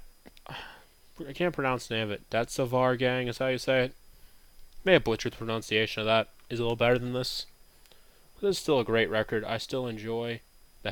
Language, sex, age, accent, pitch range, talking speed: English, male, 20-39, American, 110-125 Hz, 210 wpm